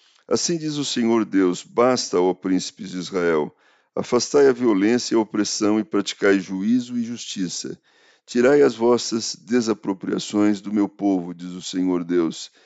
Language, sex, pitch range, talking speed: Portuguese, male, 95-120 Hz, 150 wpm